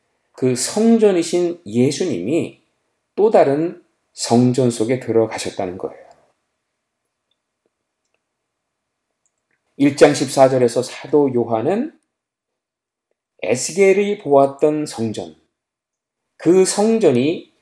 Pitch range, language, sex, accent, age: 125-200 Hz, Korean, male, native, 40-59